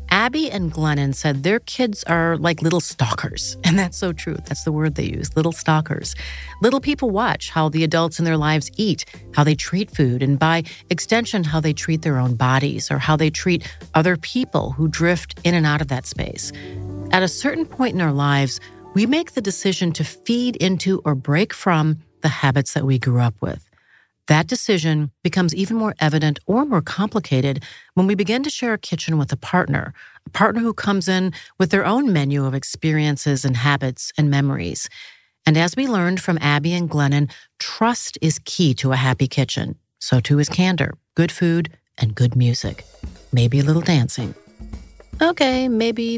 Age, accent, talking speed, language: 40-59, American, 190 wpm, English